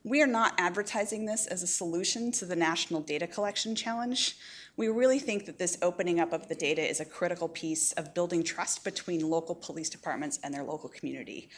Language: English